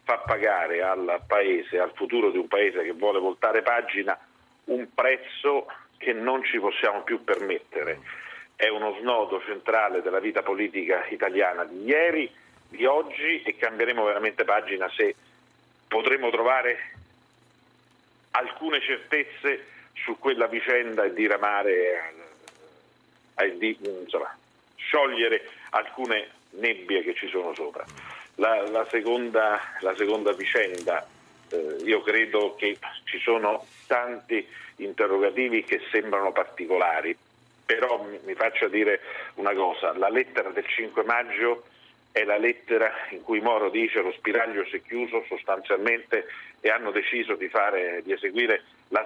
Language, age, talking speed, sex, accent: Italian, 50-69, 130 wpm, male, native